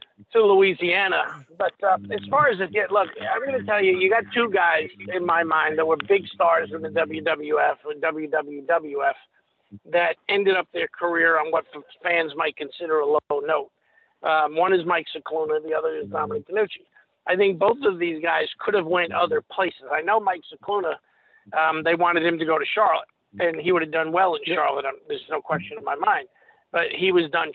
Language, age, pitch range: English, 50-69, 165-235 Hz